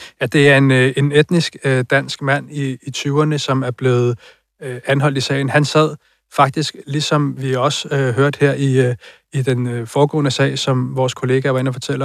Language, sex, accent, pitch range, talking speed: Danish, male, native, 130-145 Hz, 205 wpm